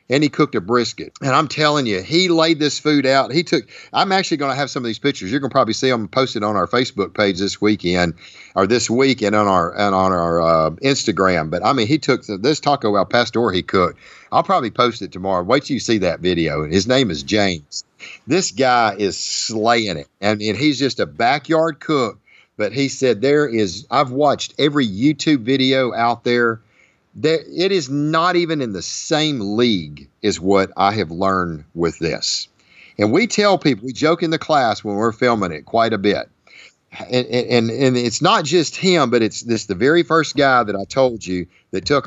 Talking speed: 215 wpm